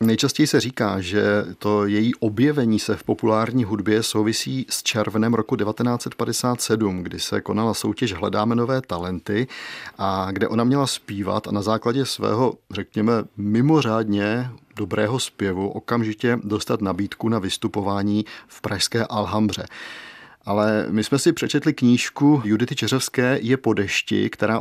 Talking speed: 135 wpm